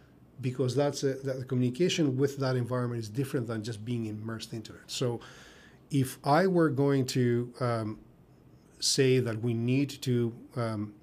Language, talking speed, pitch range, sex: English, 165 wpm, 110-135 Hz, male